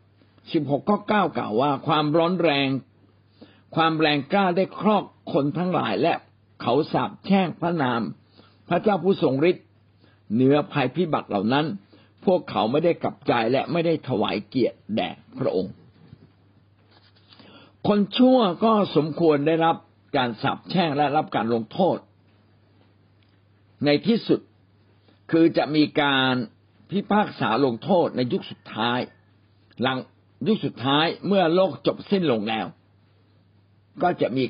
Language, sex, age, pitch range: Thai, male, 60-79, 105-165 Hz